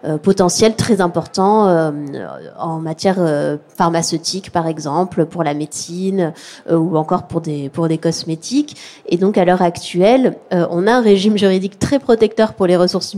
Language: French